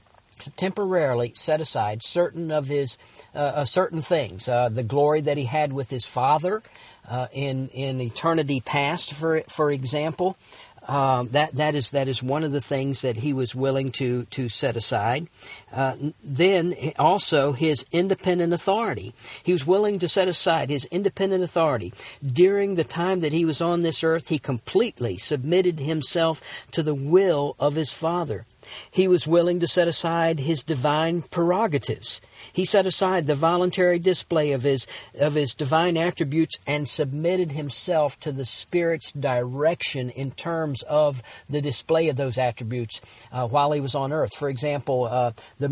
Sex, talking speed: male, 165 wpm